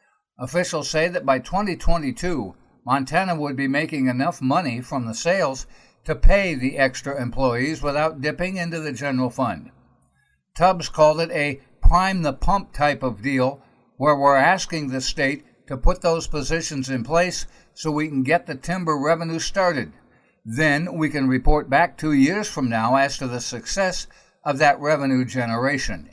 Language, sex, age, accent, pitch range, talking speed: English, male, 60-79, American, 135-170 Hz, 160 wpm